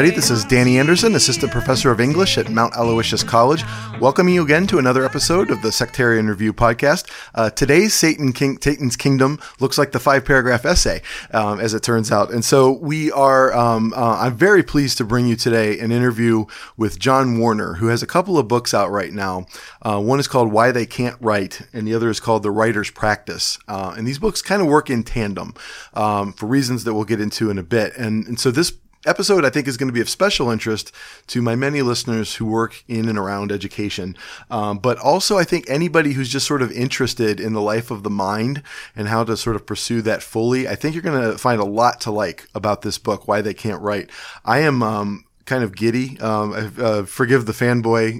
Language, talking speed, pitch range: English, 220 wpm, 105-130 Hz